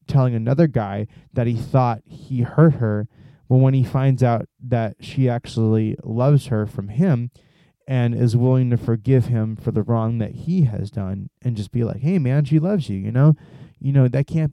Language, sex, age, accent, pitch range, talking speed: English, male, 20-39, American, 115-150 Hz, 200 wpm